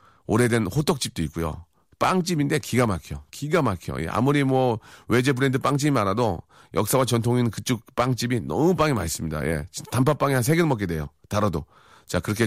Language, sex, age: Korean, male, 40-59